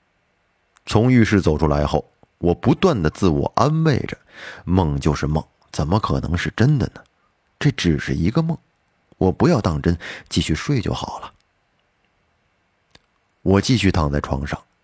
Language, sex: Chinese, male